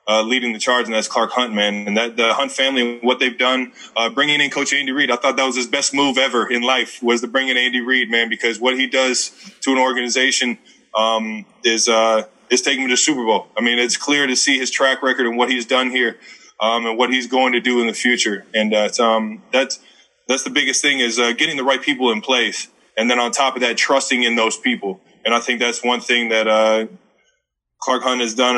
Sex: male